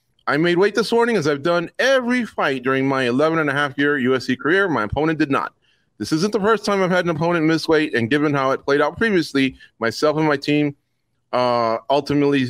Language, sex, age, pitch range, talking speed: English, male, 30-49, 120-155 Hz, 225 wpm